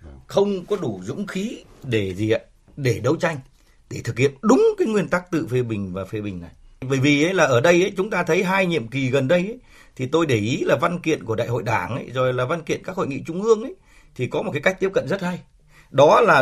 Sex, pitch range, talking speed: male, 120-180 Hz, 270 wpm